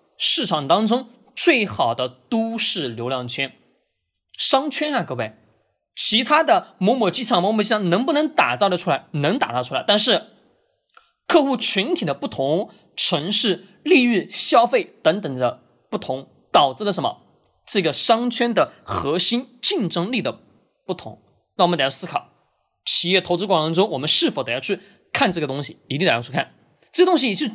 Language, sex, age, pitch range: Chinese, male, 20-39, 160-245 Hz